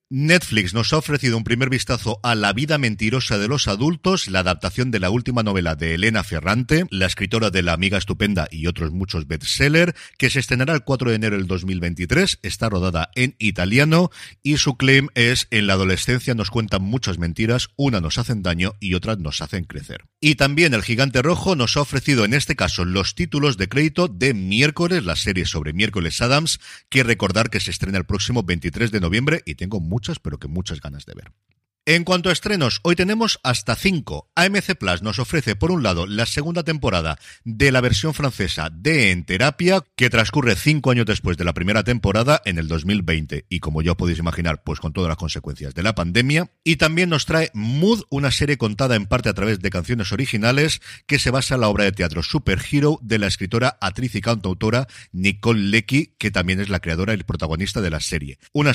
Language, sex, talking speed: Spanish, male, 205 wpm